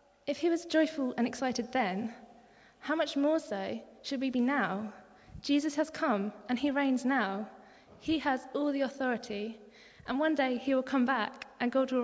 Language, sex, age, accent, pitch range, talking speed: English, female, 20-39, British, 210-265 Hz, 185 wpm